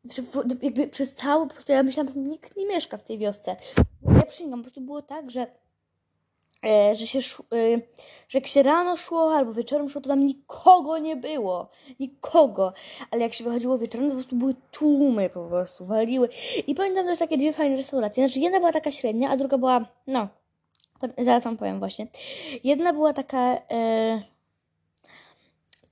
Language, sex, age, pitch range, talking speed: Polish, female, 20-39, 235-295 Hz, 175 wpm